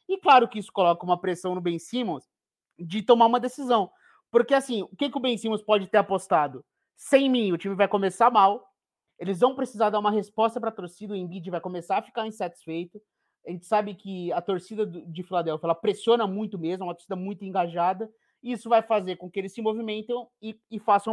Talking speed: 220 wpm